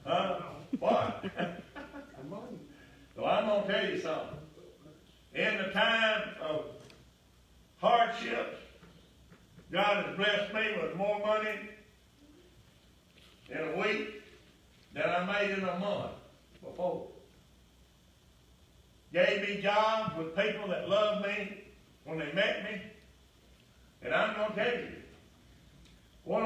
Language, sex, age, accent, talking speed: English, male, 60-79, American, 110 wpm